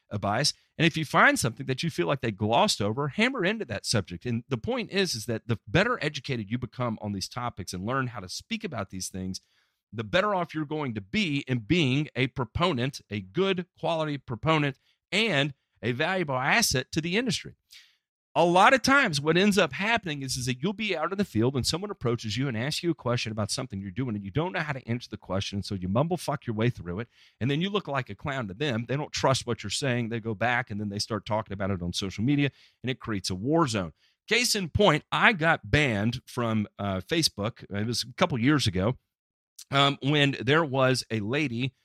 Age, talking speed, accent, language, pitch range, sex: 40-59, 235 wpm, American, English, 105-145 Hz, male